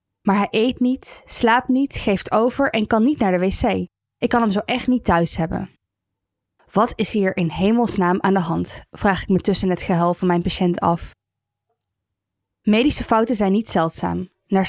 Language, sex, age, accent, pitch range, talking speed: Dutch, female, 20-39, Dutch, 175-220 Hz, 190 wpm